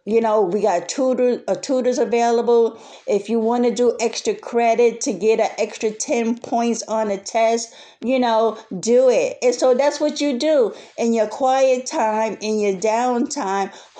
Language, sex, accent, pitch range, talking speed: English, female, American, 215-265 Hz, 165 wpm